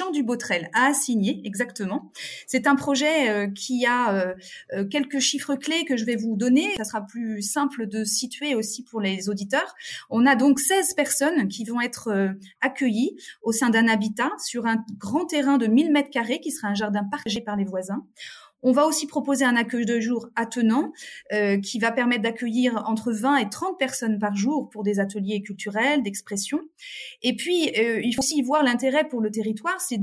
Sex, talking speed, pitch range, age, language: female, 190 wpm, 220-280 Hz, 30-49, French